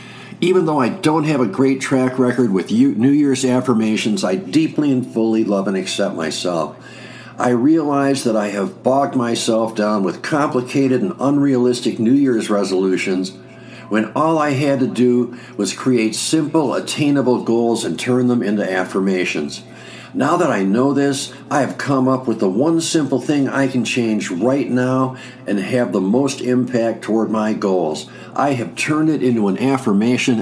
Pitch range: 110-135 Hz